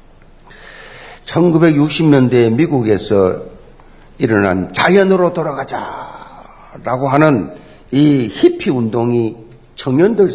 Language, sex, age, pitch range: Korean, male, 50-69, 150-230 Hz